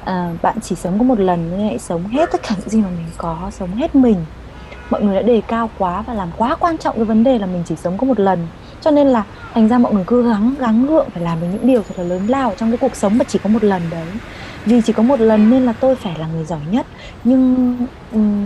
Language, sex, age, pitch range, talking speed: Vietnamese, female, 20-39, 180-240 Hz, 280 wpm